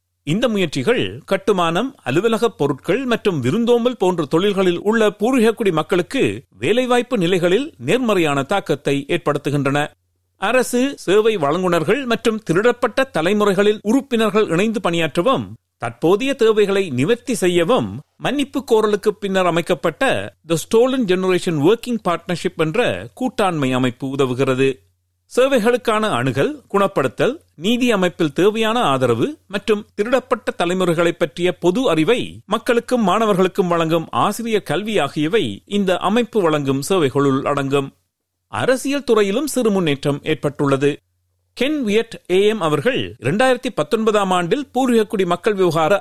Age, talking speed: 50-69, 105 wpm